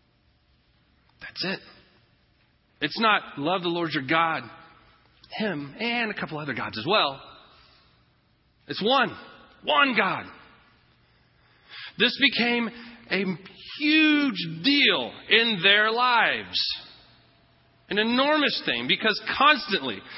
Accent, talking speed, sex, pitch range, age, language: American, 100 wpm, male, 170-240 Hz, 40-59, English